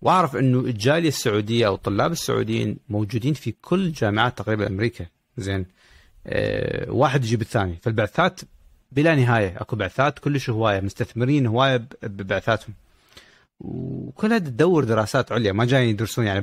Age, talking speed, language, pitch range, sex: 40-59, 130 wpm, Arabic, 100-125 Hz, male